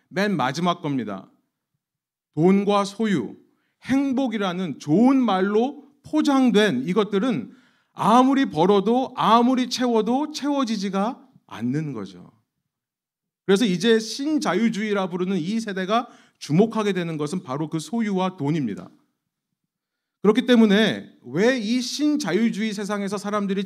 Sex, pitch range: male, 180-235 Hz